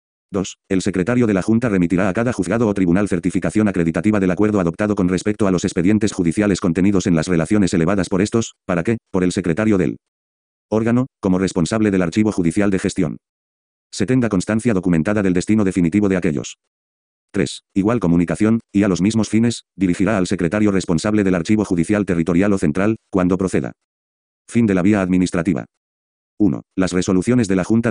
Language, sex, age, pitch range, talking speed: Spanish, male, 40-59, 90-105 Hz, 180 wpm